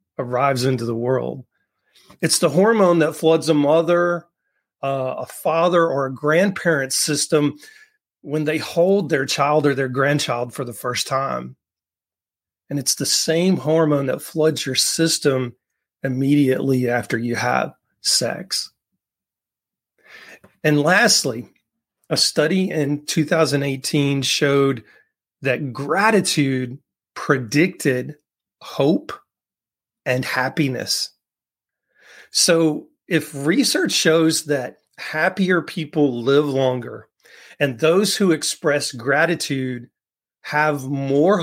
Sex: male